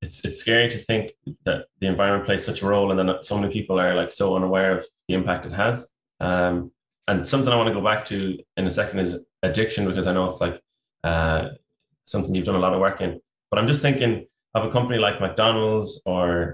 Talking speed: 235 wpm